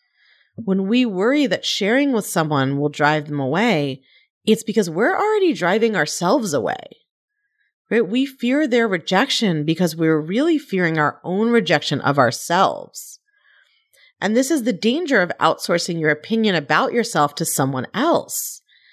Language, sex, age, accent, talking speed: English, female, 30-49, American, 145 wpm